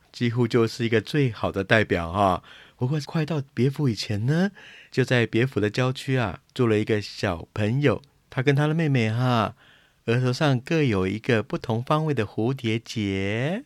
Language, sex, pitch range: Chinese, male, 110-140 Hz